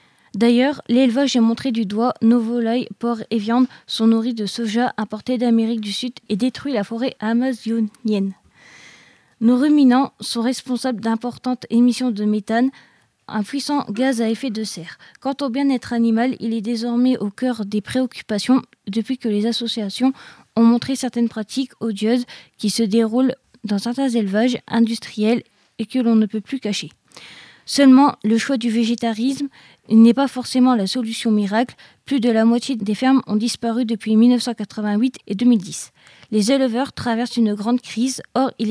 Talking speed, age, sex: 160 wpm, 20-39, female